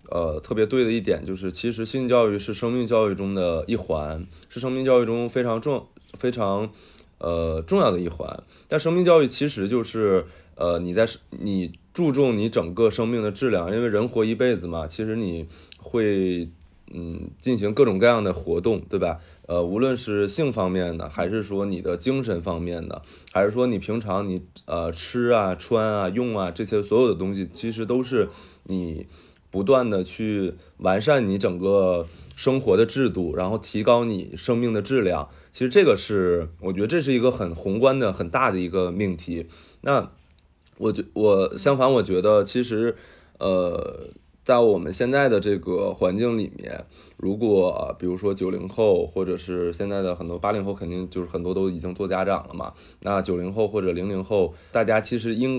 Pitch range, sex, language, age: 90-115 Hz, male, Chinese, 20-39